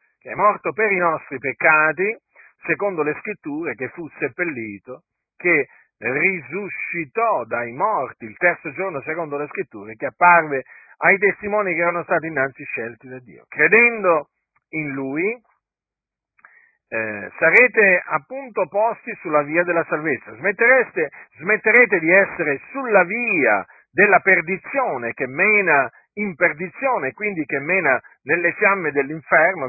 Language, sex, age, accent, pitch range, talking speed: Italian, male, 50-69, native, 145-220 Hz, 125 wpm